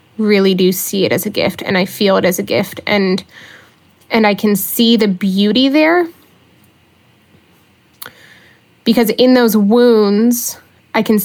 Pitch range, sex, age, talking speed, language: 200-230 Hz, female, 20-39, 150 wpm, English